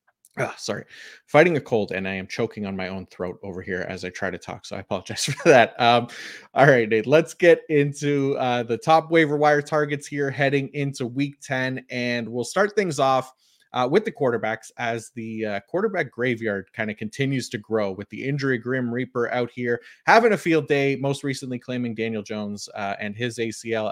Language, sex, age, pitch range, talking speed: English, male, 30-49, 110-140 Hz, 205 wpm